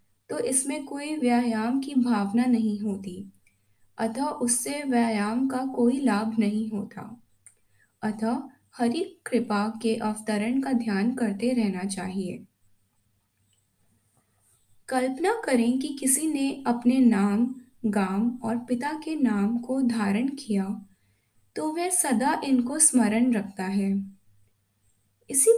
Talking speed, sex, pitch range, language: 115 wpm, female, 190-250 Hz, Hindi